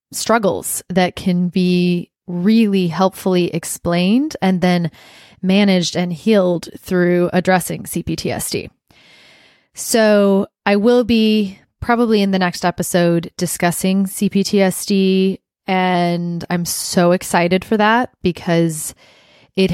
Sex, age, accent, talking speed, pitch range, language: female, 20-39, American, 105 wpm, 175-210 Hz, English